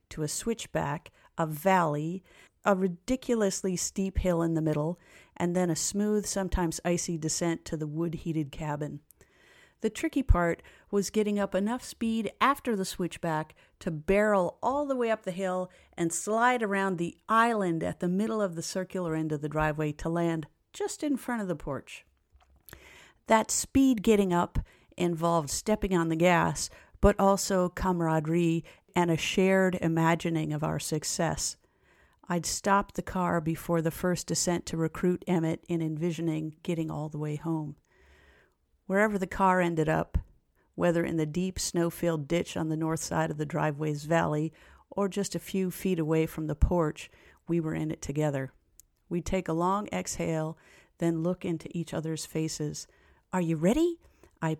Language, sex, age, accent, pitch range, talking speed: English, female, 50-69, American, 160-190 Hz, 165 wpm